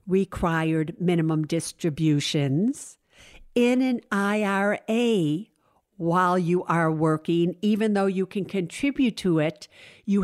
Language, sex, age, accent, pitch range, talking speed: English, female, 50-69, American, 160-195 Hz, 105 wpm